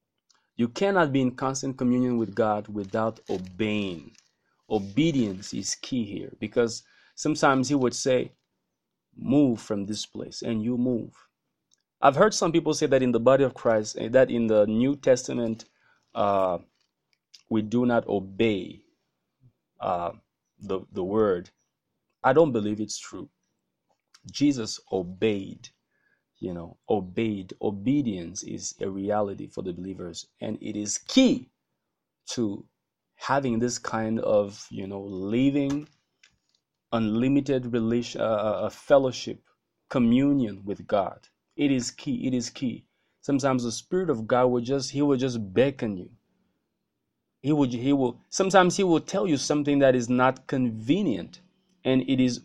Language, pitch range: English, 110-140 Hz